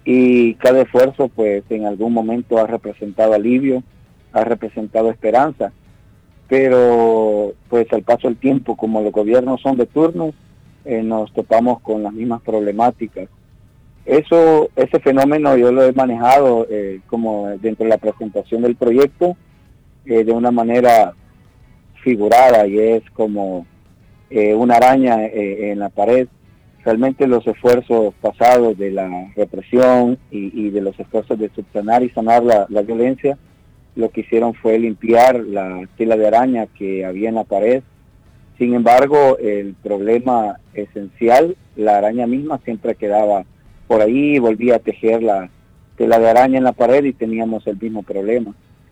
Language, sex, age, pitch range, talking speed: Spanish, male, 50-69, 105-125 Hz, 150 wpm